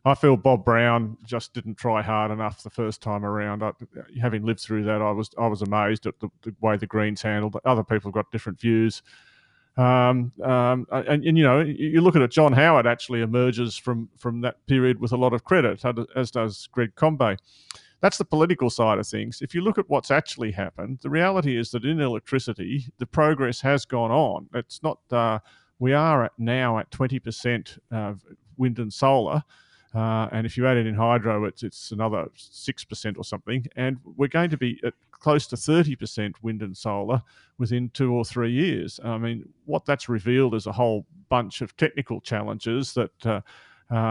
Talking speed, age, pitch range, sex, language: 195 wpm, 30-49, 110-130 Hz, male, English